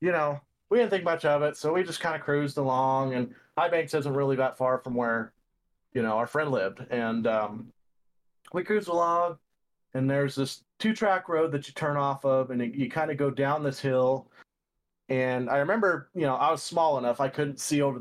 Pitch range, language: 120-145 Hz, English